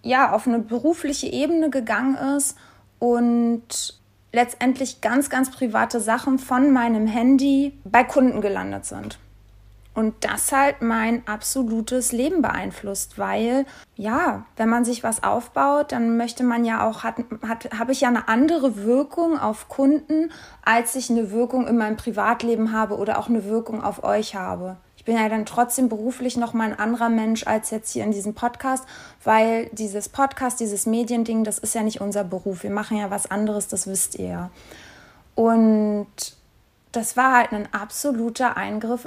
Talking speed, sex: 165 wpm, female